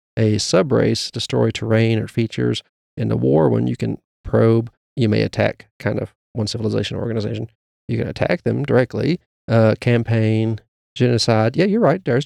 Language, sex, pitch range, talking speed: English, male, 110-130 Hz, 165 wpm